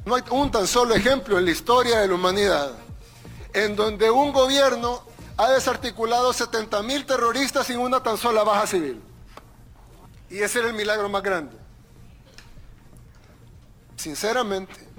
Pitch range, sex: 165-230 Hz, male